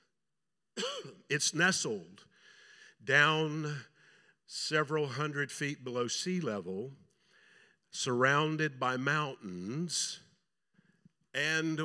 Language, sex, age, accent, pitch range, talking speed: English, male, 50-69, American, 125-160 Hz, 65 wpm